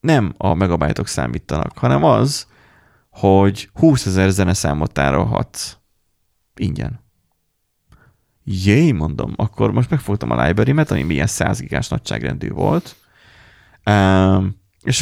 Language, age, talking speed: Hungarian, 30-49, 105 wpm